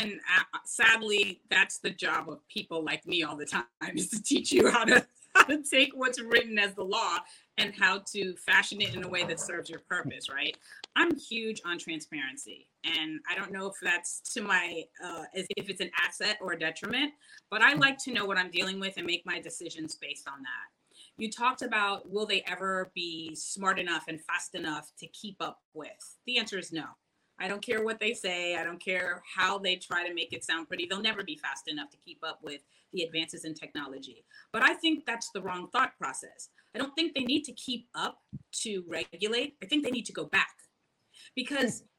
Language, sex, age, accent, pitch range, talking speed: English, female, 30-49, American, 170-255 Hz, 215 wpm